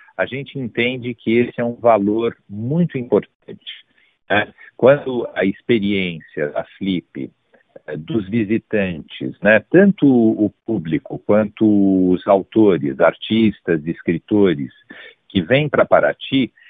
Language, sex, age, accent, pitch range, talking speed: Portuguese, male, 60-79, Brazilian, 100-125 Hz, 110 wpm